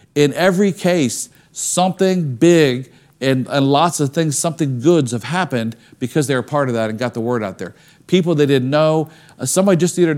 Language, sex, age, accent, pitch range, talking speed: English, male, 50-69, American, 130-170 Hz, 195 wpm